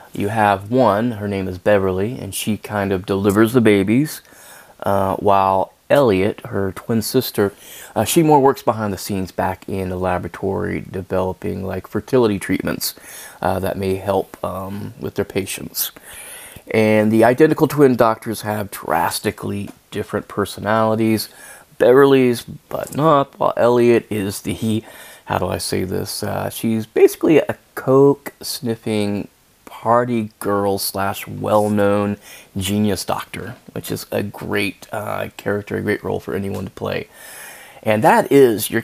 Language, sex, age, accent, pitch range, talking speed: English, male, 30-49, American, 100-115 Hz, 140 wpm